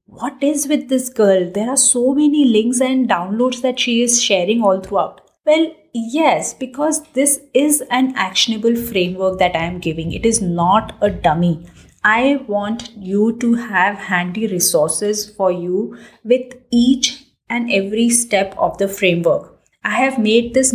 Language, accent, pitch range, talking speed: English, Indian, 190-250 Hz, 160 wpm